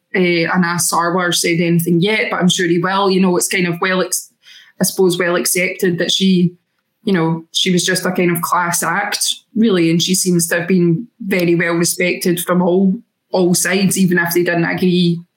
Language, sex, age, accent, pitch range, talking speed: English, female, 20-39, British, 175-200 Hz, 205 wpm